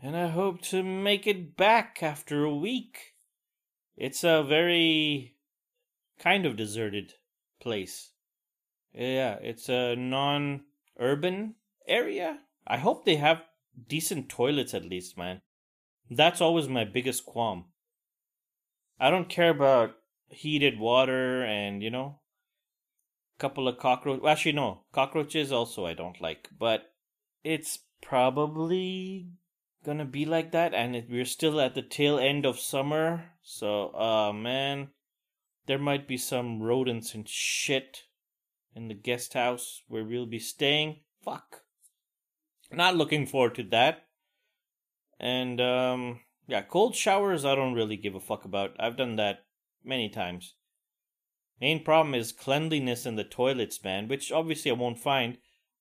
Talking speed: 135 wpm